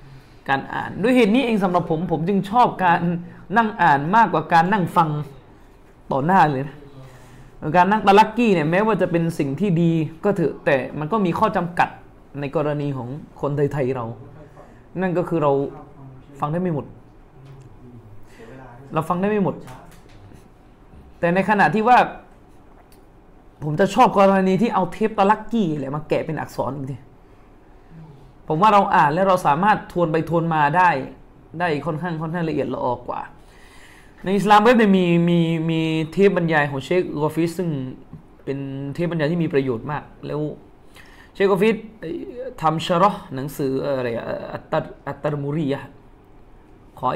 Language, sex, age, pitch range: Thai, male, 20-39, 140-190 Hz